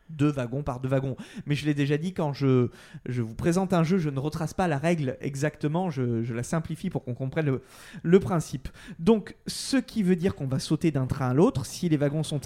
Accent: French